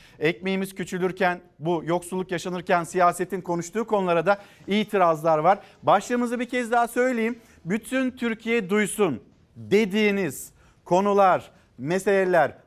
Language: Turkish